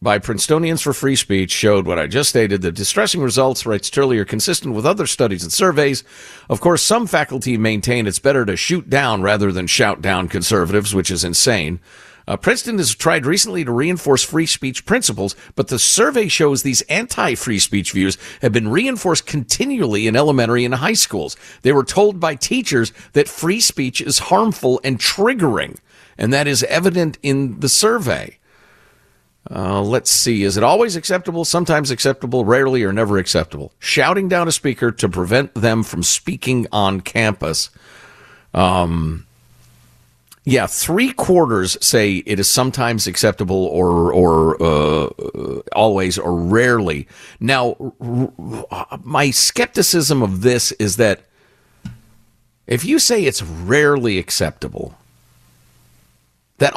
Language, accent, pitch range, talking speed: English, American, 95-145 Hz, 145 wpm